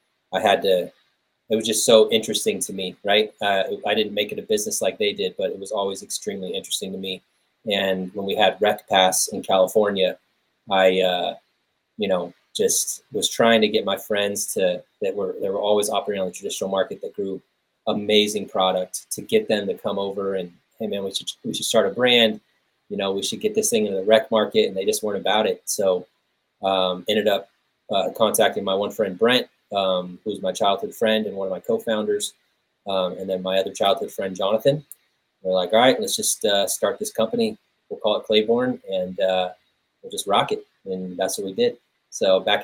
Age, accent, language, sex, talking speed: 20-39, American, English, male, 215 wpm